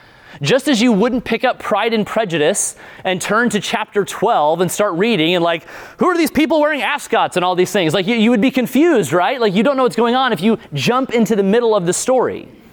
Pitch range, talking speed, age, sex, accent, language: 195-255 Hz, 245 wpm, 30-49, male, American, English